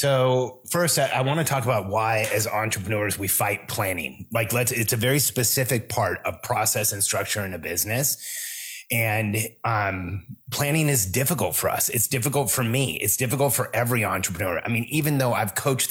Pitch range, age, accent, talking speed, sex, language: 105-130 Hz, 30-49, American, 190 wpm, male, English